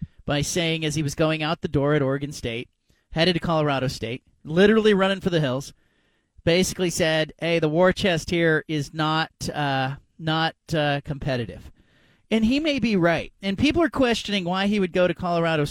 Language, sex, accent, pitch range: English, male, American, 140-180 Hz